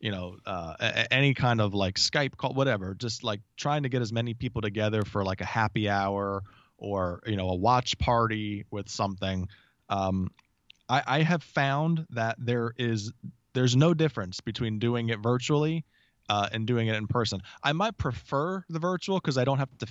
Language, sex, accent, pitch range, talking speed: English, male, American, 105-135 Hz, 190 wpm